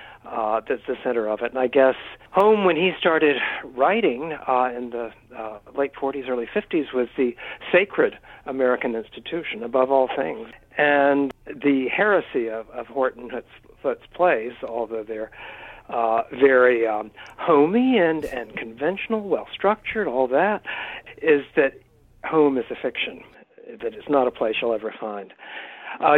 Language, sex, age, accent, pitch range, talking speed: English, male, 60-79, American, 120-155 Hz, 150 wpm